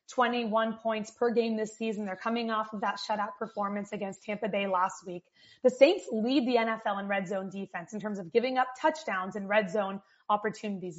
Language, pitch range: English, 210-245 Hz